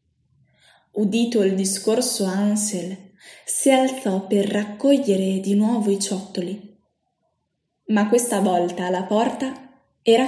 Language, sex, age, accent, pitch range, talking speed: Italian, female, 20-39, native, 195-255 Hz, 105 wpm